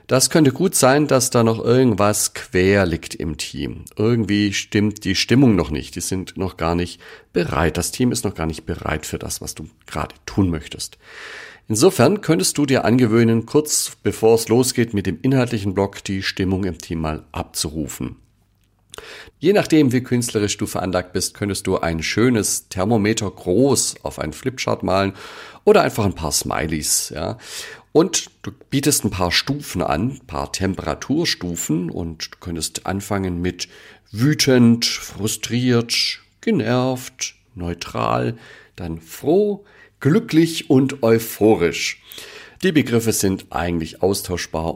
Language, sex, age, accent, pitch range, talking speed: German, male, 40-59, German, 85-120 Hz, 145 wpm